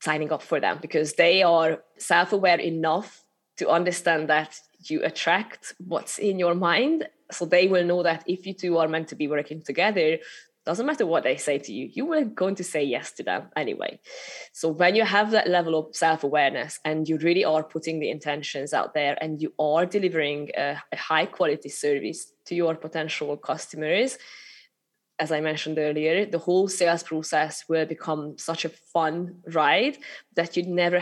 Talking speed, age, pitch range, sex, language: 190 wpm, 20-39, 155-180 Hz, female, English